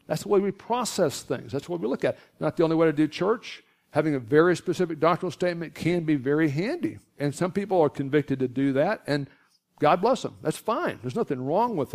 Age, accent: 60-79, American